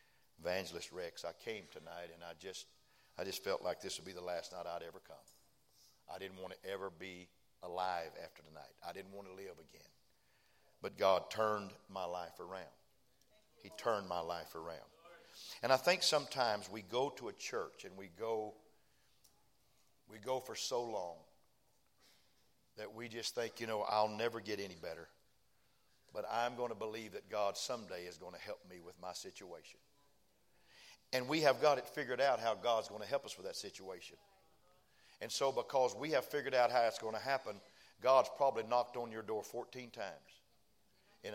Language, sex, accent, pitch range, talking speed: English, male, American, 105-135 Hz, 185 wpm